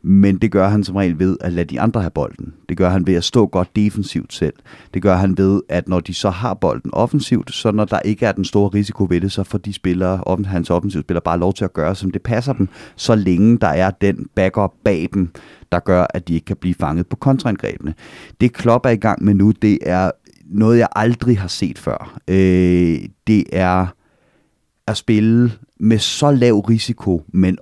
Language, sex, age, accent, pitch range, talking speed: Danish, male, 30-49, native, 90-110 Hz, 220 wpm